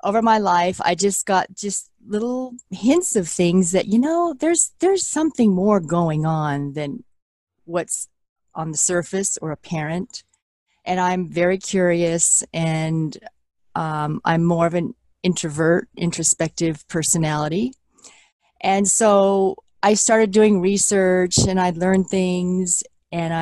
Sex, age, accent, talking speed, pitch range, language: female, 40-59, American, 130 wpm, 165-205 Hz, English